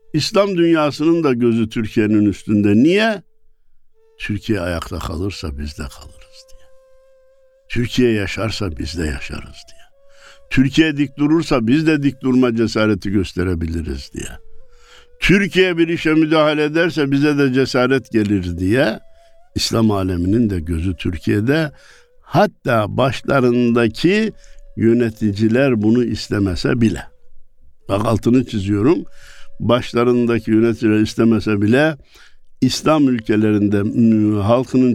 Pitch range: 105-155 Hz